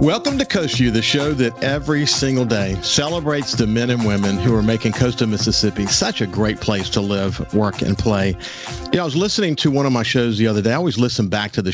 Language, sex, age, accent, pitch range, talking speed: English, male, 50-69, American, 105-130 Hz, 245 wpm